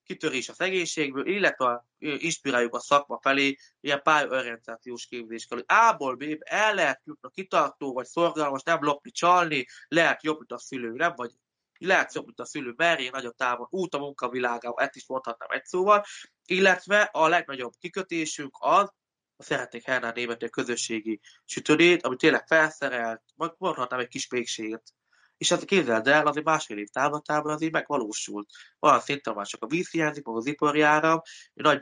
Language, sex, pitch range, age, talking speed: Hungarian, male, 120-155 Hz, 20-39, 160 wpm